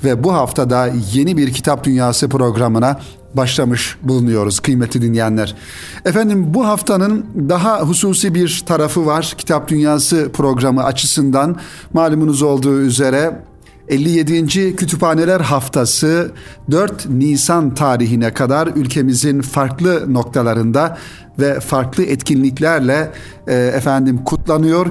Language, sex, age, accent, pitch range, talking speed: Turkish, male, 50-69, native, 125-155 Hz, 105 wpm